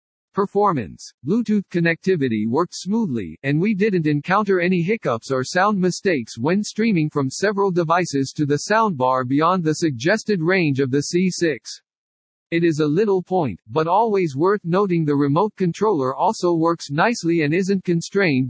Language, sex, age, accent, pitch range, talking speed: English, male, 50-69, American, 145-195 Hz, 150 wpm